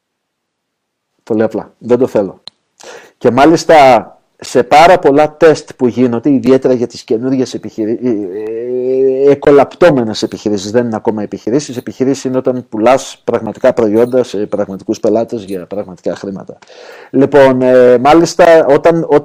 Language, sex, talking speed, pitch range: Greek, male, 120 wpm, 120-155 Hz